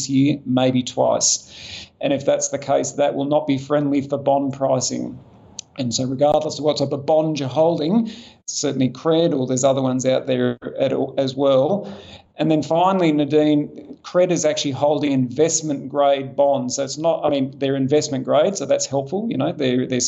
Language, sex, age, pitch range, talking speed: English, male, 40-59, 135-150 Hz, 190 wpm